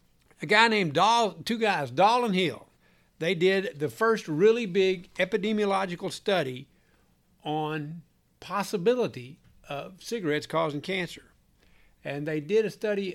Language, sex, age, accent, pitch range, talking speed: English, male, 60-79, American, 140-205 Hz, 130 wpm